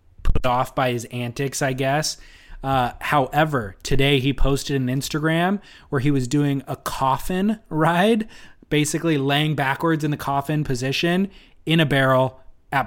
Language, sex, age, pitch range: English, male, 20-39, 115-145 Hz